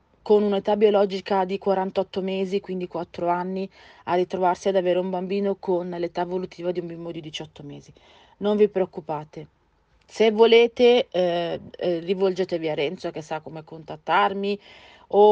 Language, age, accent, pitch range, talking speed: Italian, 40-59, native, 170-195 Hz, 150 wpm